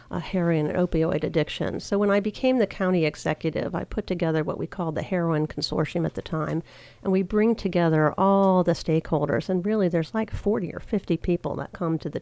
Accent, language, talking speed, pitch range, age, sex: American, English, 210 wpm, 165-195 Hz, 50-69, female